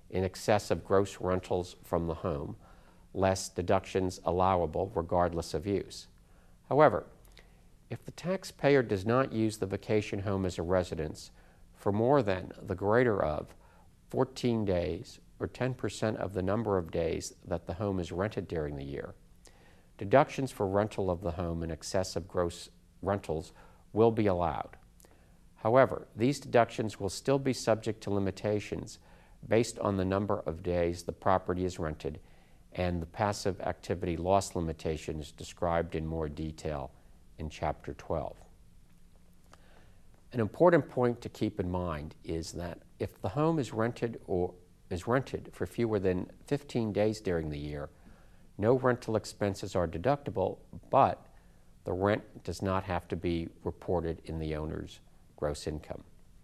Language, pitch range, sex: English, 85-105 Hz, male